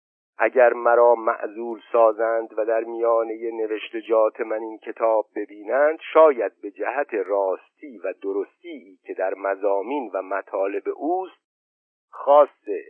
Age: 50-69